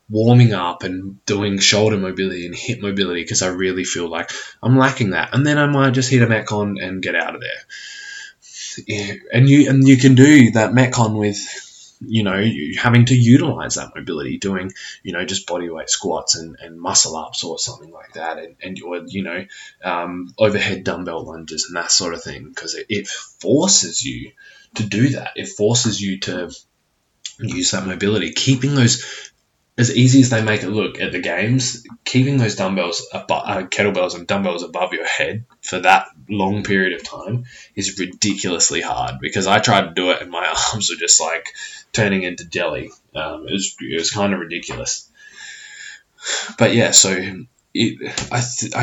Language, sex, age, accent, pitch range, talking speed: English, male, 20-39, Australian, 95-130 Hz, 185 wpm